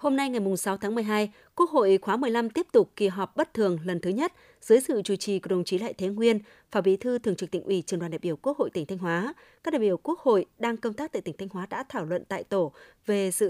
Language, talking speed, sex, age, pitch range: Vietnamese, 285 wpm, female, 20-39, 185-235 Hz